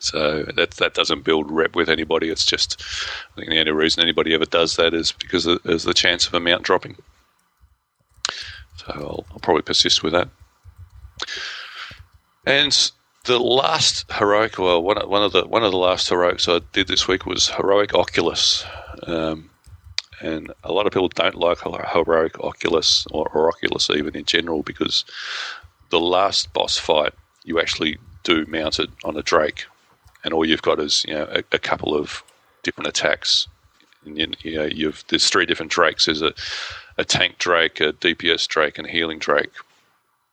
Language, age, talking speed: English, 40-59, 170 wpm